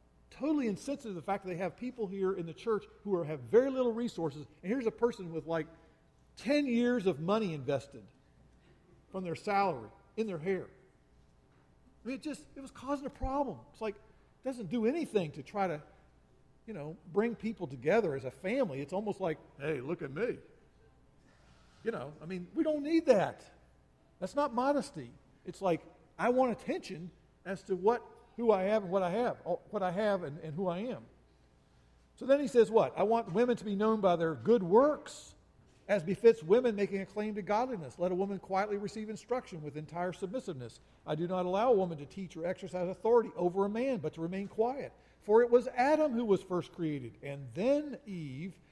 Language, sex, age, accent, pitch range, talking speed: English, male, 50-69, American, 160-230 Hz, 200 wpm